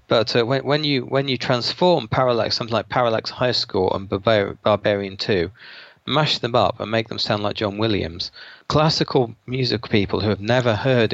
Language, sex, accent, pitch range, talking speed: English, male, British, 105-125 Hz, 190 wpm